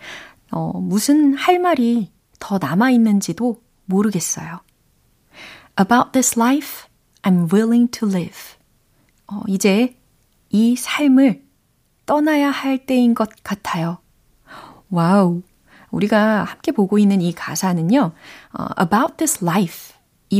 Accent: native